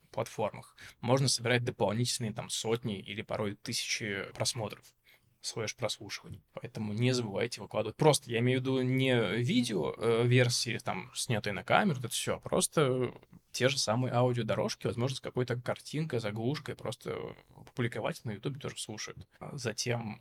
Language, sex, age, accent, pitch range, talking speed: Russian, male, 20-39, native, 110-125 Hz, 140 wpm